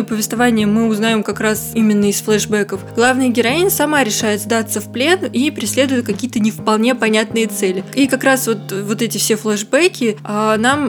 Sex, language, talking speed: female, Russian, 175 wpm